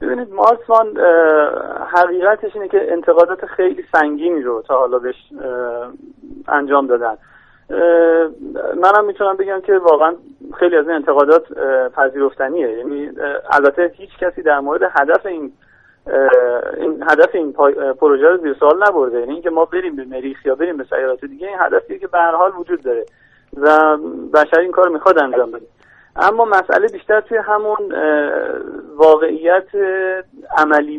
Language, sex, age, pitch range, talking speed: Persian, male, 40-59, 145-210 Hz, 135 wpm